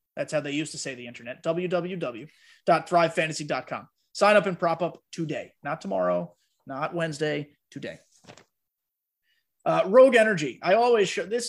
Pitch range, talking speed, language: 160-195 Hz, 140 wpm, English